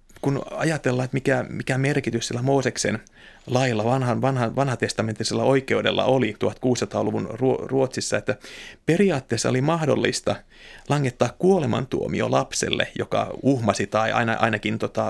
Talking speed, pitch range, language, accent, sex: 105 wpm, 115-140 Hz, Finnish, native, male